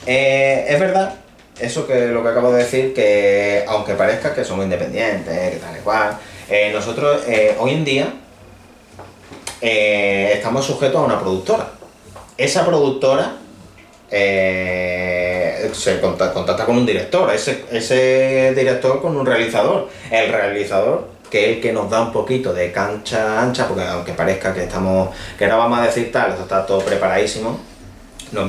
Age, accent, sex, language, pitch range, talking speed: 30-49, Spanish, male, Spanish, 95-130 Hz, 160 wpm